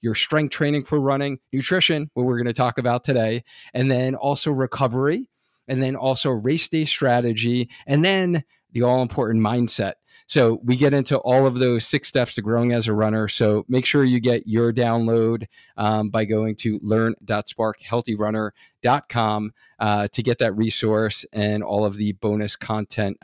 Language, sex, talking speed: English, male, 165 wpm